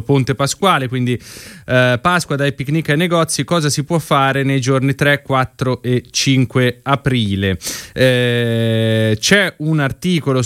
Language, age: Italian, 20-39